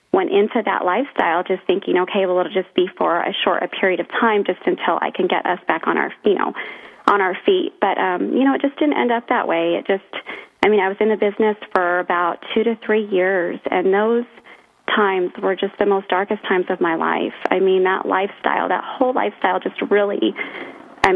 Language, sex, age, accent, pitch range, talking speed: English, female, 30-49, American, 190-225 Hz, 225 wpm